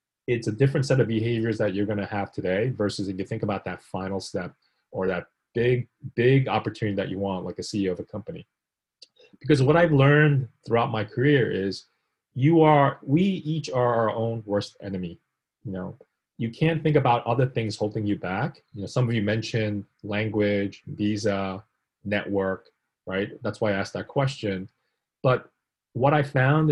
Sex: male